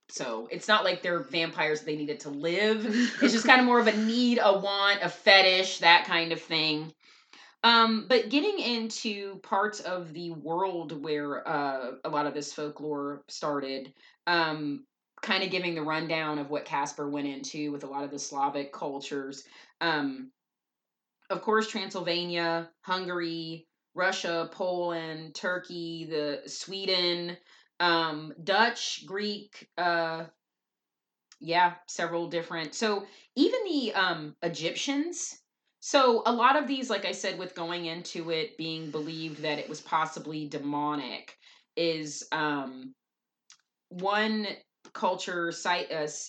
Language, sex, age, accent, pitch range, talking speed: English, female, 20-39, American, 155-200 Hz, 140 wpm